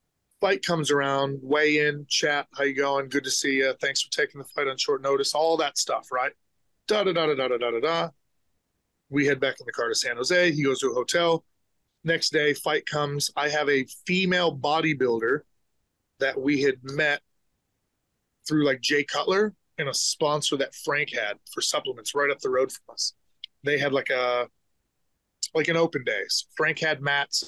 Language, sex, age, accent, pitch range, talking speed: English, male, 20-39, American, 135-160 Hz, 195 wpm